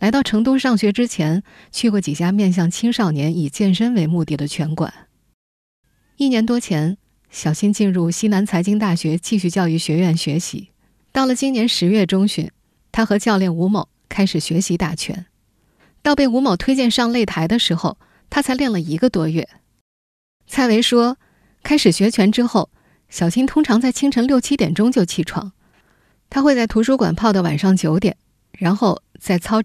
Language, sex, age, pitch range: Chinese, female, 20-39, 170-230 Hz